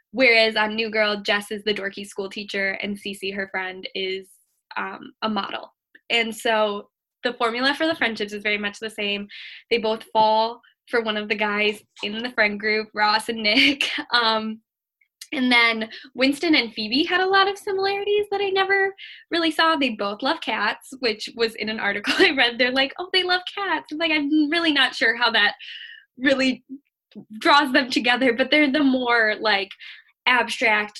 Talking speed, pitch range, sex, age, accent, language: 185 wpm, 210-295 Hz, female, 10-29, American, English